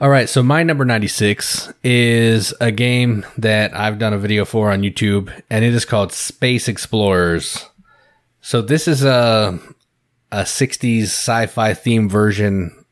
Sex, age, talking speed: male, 20-39, 150 wpm